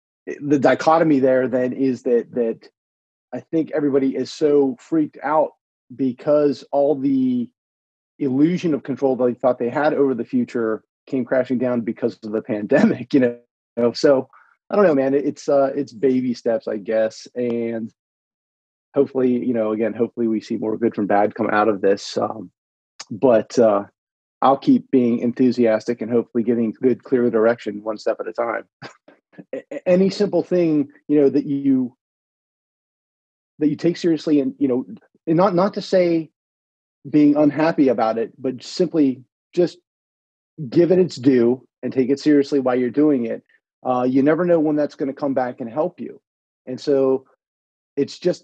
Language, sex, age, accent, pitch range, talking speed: English, male, 30-49, American, 120-150 Hz, 170 wpm